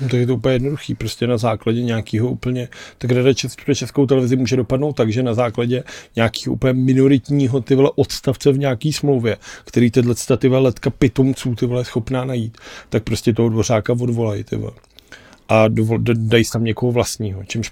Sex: male